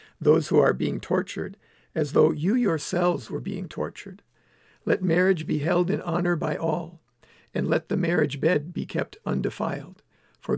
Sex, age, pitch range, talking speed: male, 60-79, 155-185 Hz, 165 wpm